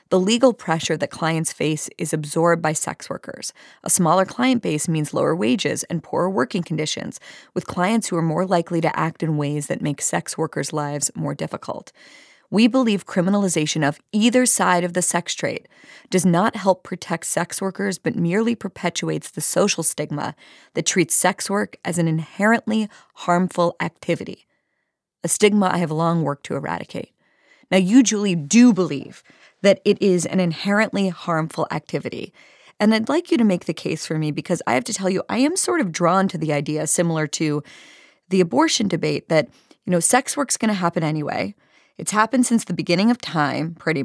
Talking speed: 185 wpm